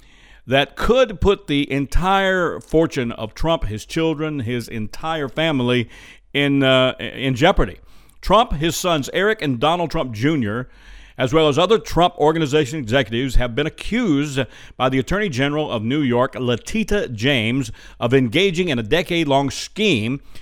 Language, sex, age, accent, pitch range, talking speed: English, male, 50-69, American, 125-160 Hz, 145 wpm